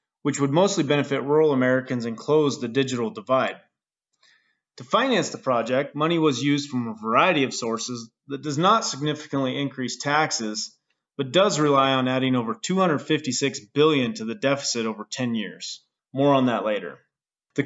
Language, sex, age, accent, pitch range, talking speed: English, male, 30-49, American, 125-155 Hz, 165 wpm